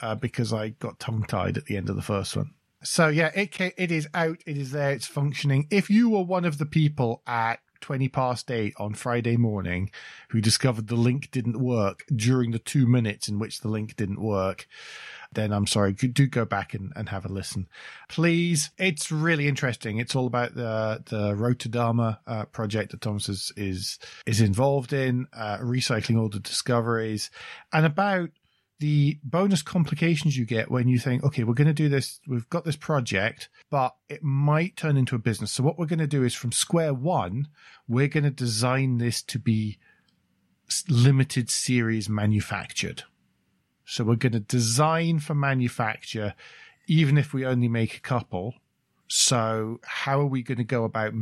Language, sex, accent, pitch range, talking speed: English, male, British, 110-145 Hz, 185 wpm